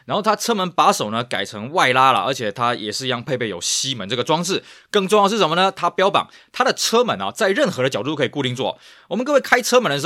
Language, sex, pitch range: Chinese, male, 125-185 Hz